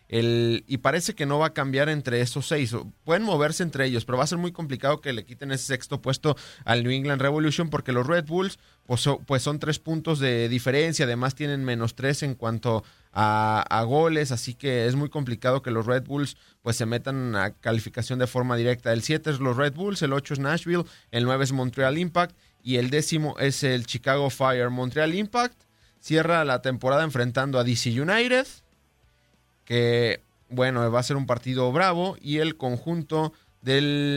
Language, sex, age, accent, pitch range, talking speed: Spanish, male, 30-49, Mexican, 120-150 Hz, 190 wpm